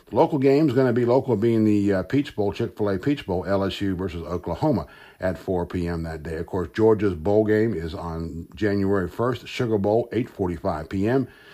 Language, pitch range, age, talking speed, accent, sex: English, 100-130 Hz, 60-79, 185 wpm, American, male